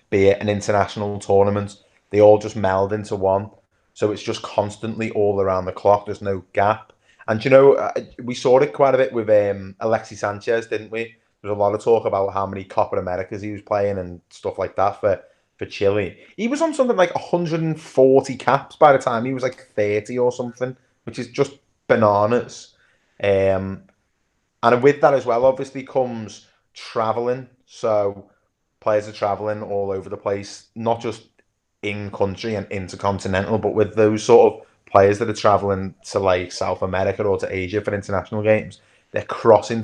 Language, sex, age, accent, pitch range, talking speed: English, male, 20-39, British, 100-115 Hz, 180 wpm